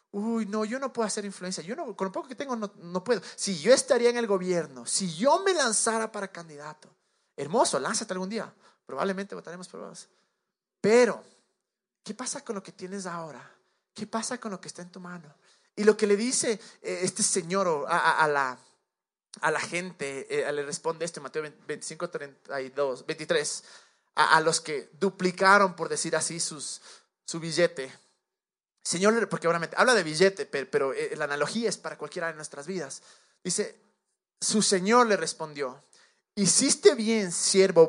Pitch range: 155-215 Hz